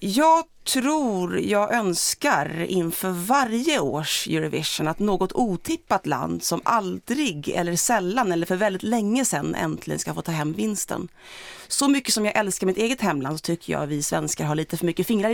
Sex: female